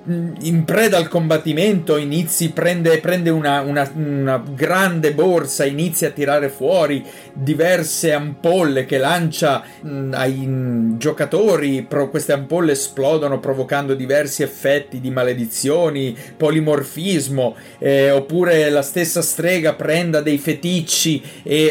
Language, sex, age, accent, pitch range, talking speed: Italian, male, 30-49, native, 135-160 Hz, 120 wpm